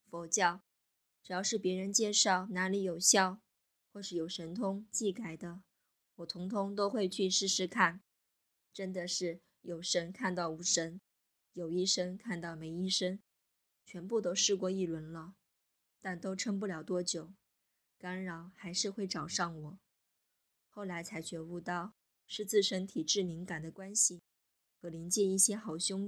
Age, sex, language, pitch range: 20-39, female, Chinese, 175-200 Hz